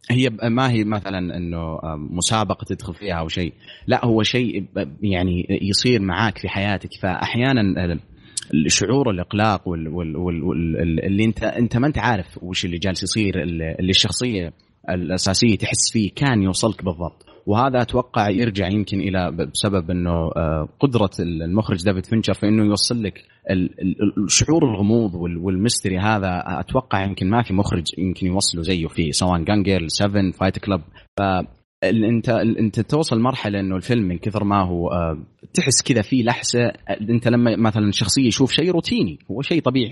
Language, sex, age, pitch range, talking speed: Arabic, male, 30-49, 95-120 Hz, 145 wpm